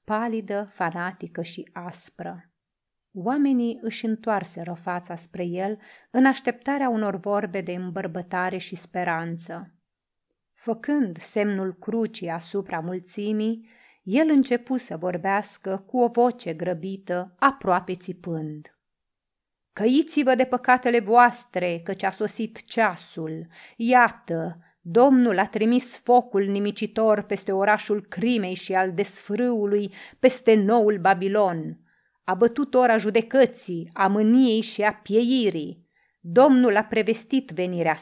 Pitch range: 185-235 Hz